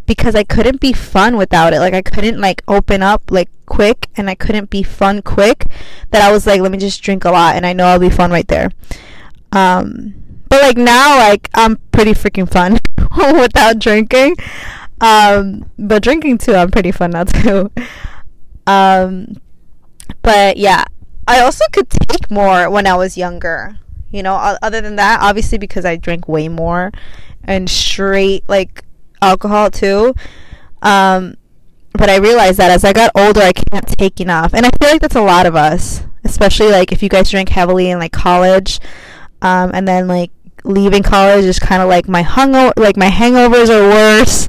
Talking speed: 185 wpm